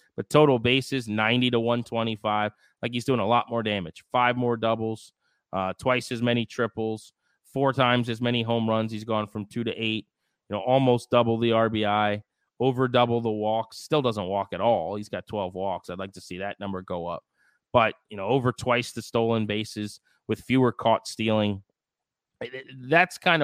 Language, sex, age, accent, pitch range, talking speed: English, male, 30-49, American, 105-125 Hz, 190 wpm